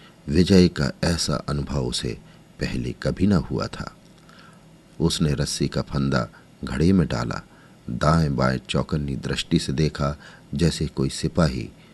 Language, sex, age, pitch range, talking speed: Hindi, male, 50-69, 70-90 Hz, 130 wpm